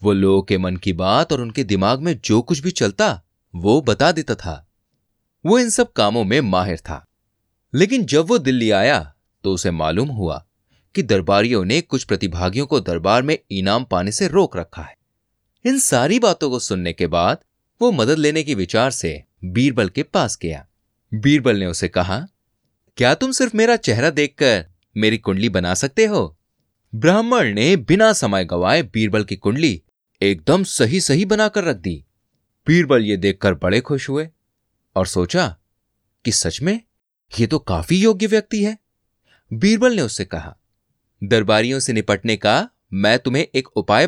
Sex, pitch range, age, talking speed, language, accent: male, 95-150 Hz, 30-49, 165 wpm, Hindi, native